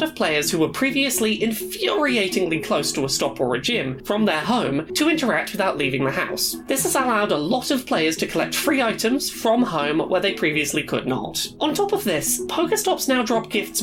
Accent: British